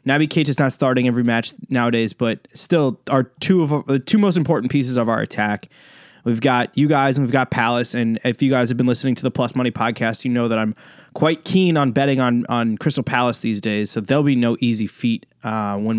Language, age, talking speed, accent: English, 20-39, 240 wpm, American